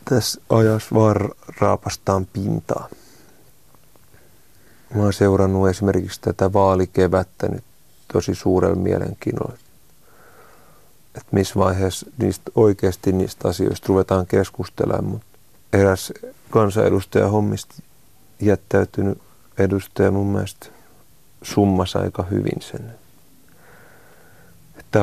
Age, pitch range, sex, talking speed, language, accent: 30-49, 95-105 Hz, male, 85 wpm, Finnish, native